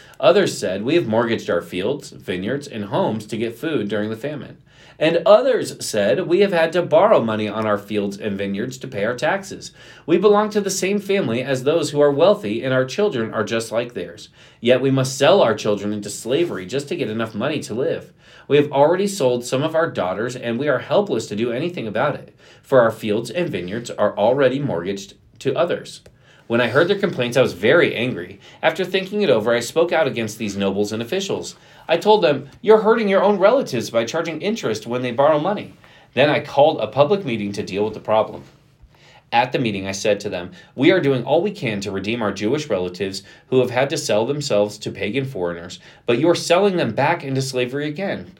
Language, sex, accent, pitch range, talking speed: English, male, American, 110-165 Hz, 220 wpm